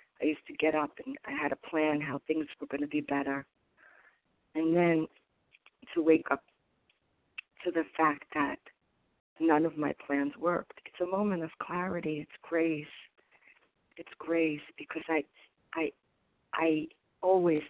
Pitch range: 145-165 Hz